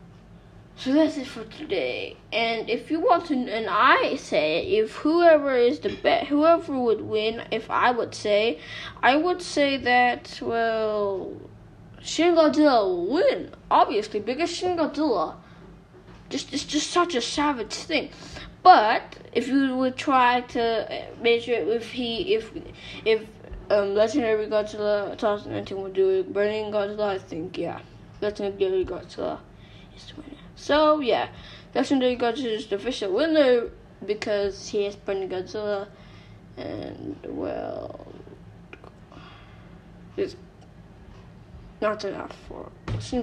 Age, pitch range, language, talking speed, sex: 10-29, 220-330 Hz, English, 130 wpm, female